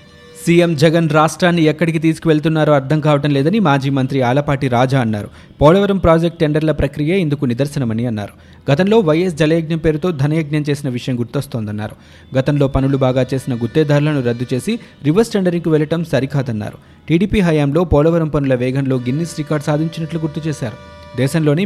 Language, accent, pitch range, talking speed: Telugu, native, 130-160 Hz, 140 wpm